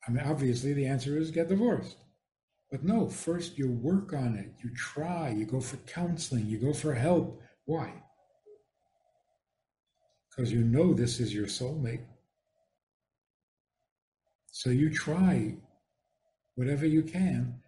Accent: American